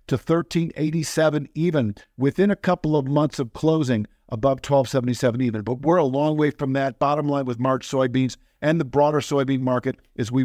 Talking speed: 185 wpm